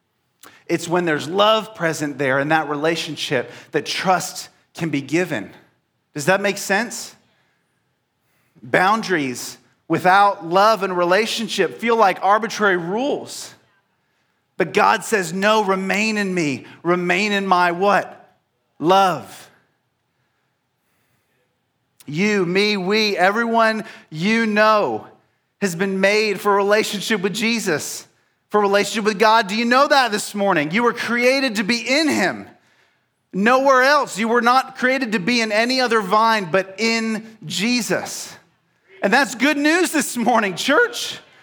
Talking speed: 135 wpm